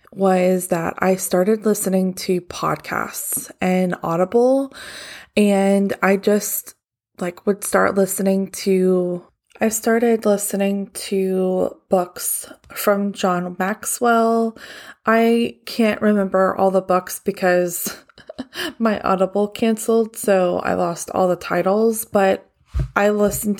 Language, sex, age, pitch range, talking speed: English, female, 20-39, 185-210 Hz, 110 wpm